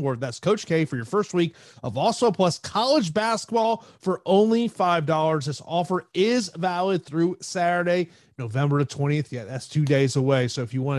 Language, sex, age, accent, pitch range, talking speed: English, male, 30-49, American, 125-165 Hz, 180 wpm